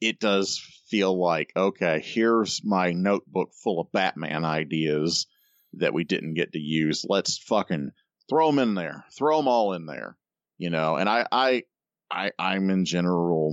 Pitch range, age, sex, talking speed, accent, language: 85-130 Hz, 40-59, male, 170 wpm, American, English